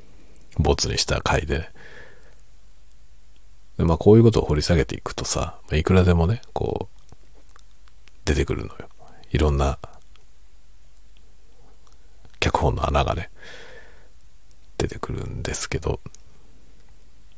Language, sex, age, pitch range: Japanese, male, 40-59, 65-85 Hz